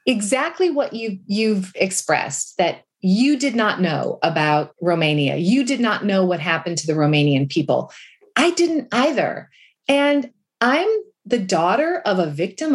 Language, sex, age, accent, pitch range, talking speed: English, female, 30-49, American, 185-275 Hz, 155 wpm